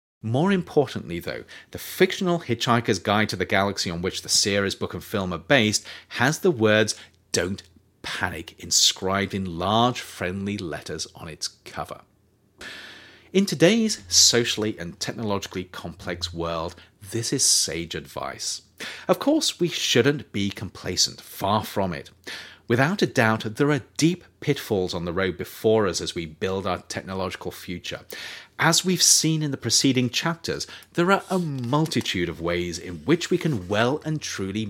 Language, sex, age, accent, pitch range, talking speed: English, male, 30-49, British, 95-150 Hz, 155 wpm